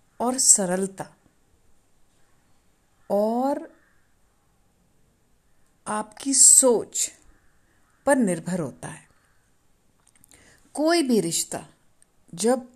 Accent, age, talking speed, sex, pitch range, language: native, 50-69, 60 wpm, female, 160-240 Hz, Hindi